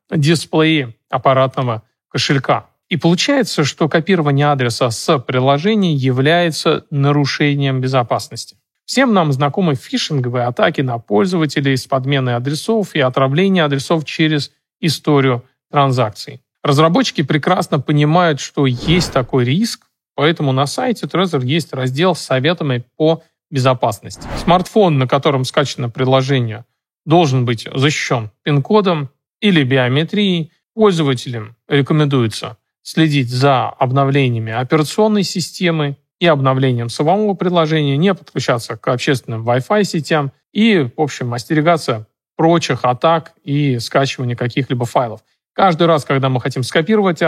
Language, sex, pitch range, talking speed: Russian, male, 130-170 Hz, 115 wpm